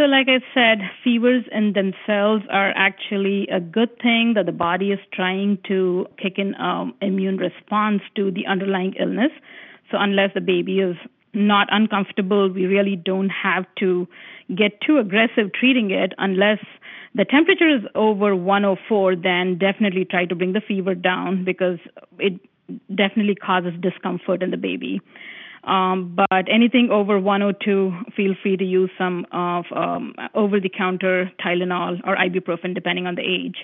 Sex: female